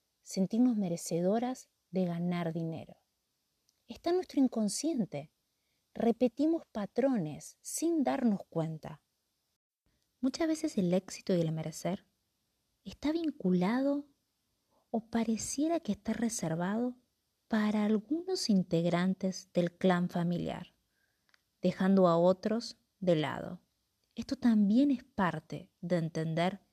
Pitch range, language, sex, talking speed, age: 175-245 Hz, Spanish, female, 100 wpm, 30-49